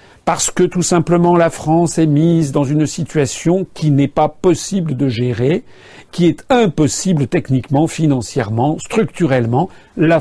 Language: French